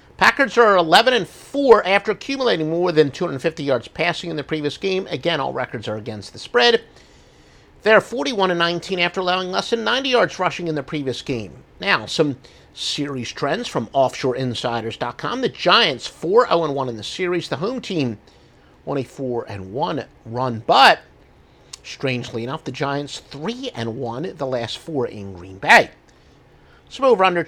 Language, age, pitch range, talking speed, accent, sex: English, 50-69, 130-180 Hz, 145 wpm, American, male